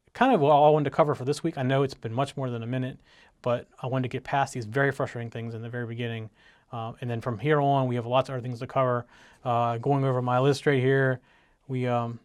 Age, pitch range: 30-49, 125-145 Hz